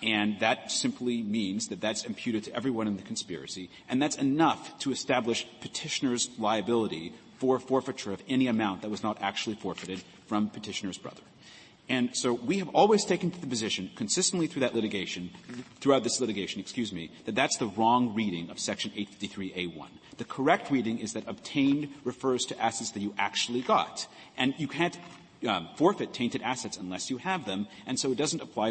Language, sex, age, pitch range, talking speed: English, male, 30-49, 105-135 Hz, 180 wpm